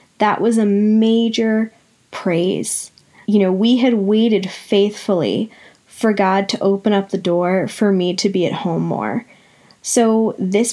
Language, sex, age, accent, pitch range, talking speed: English, female, 10-29, American, 180-220 Hz, 150 wpm